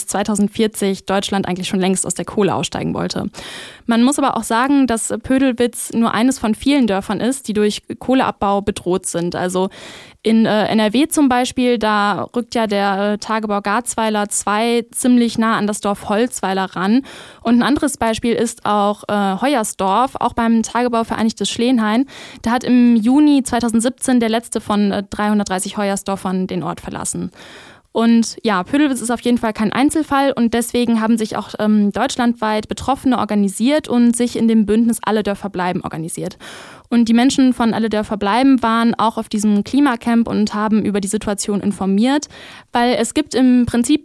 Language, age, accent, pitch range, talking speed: German, 10-29, German, 205-245 Hz, 165 wpm